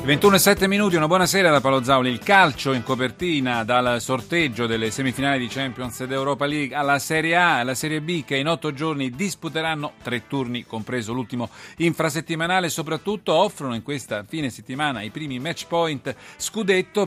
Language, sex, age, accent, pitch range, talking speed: Italian, male, 40-59, native, 125-160 Hz, 175 wpm